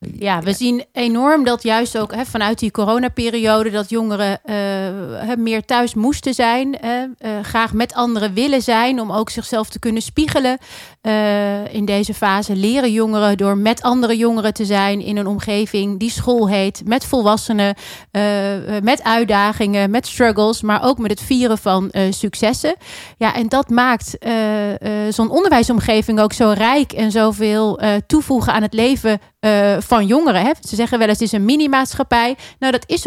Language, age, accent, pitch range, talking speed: Dutch, 30-49, Dutch, 200-235 Hz, 170 wpm